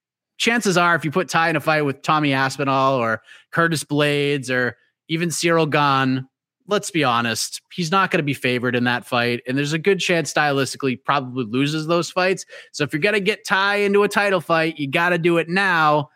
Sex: male